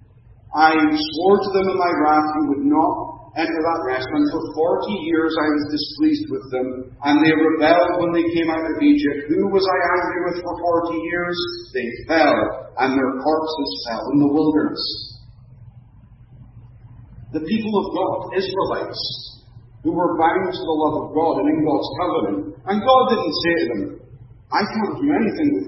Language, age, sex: English, 40-59, male